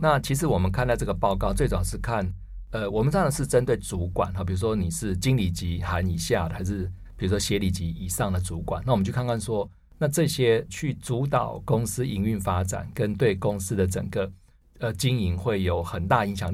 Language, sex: Chinese, male